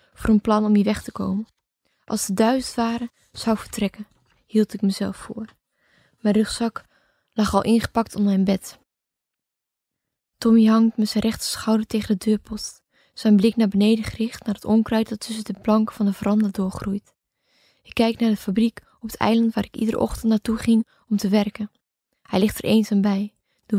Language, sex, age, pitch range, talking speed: Dutch, female, 20-39, 205-225 Hz, 185 wpm